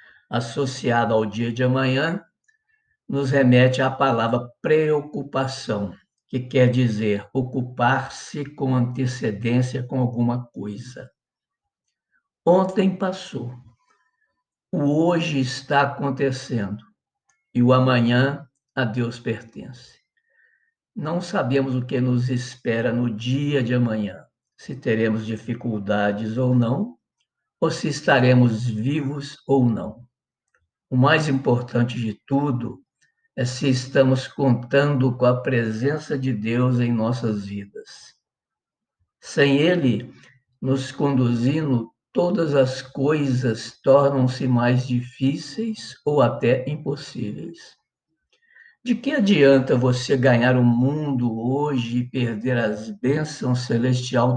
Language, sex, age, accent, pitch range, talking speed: Portuguese, male, 60-79, Brazilian, 120-140 Hz, 105 wpm